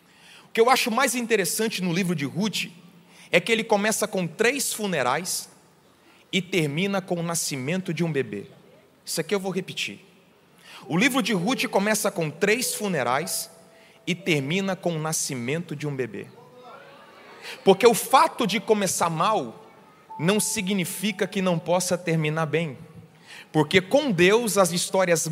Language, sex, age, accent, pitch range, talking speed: Portuguese, male, 30-49, Brazilian, 180-280 Hz, 150 wpm